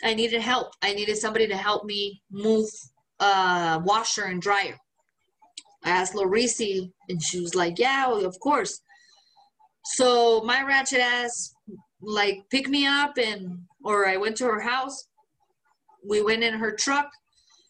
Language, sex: English, female